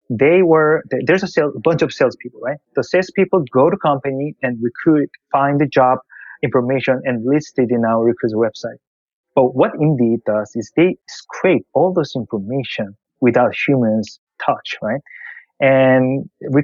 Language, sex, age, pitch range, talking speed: English, male, 20-39, 115-145 Hz, 160 wpm